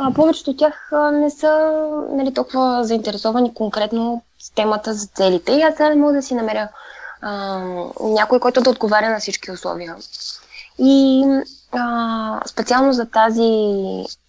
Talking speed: 145 wpm